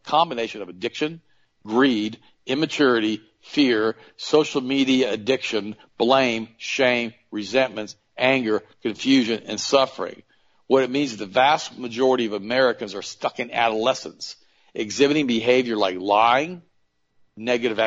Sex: male